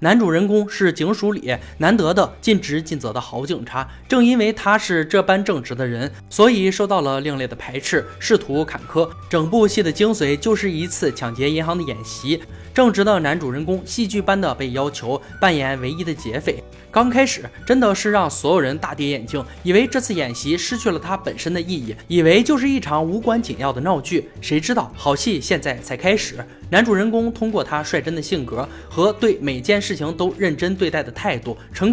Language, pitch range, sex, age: Chinese, 140-210 Hz, male, 20-39